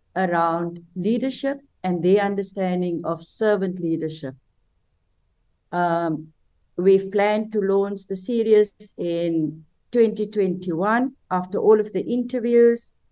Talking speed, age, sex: 100 wpm, 50-69, female